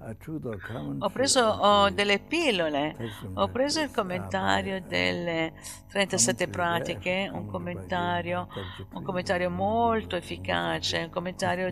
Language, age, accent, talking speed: Italian, 60-79, native, 100 wpm